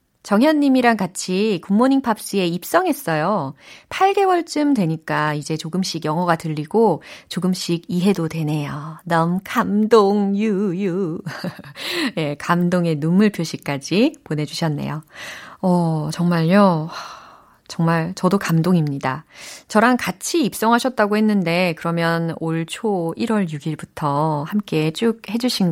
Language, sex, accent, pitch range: Korean, female, native, 165-235 Hz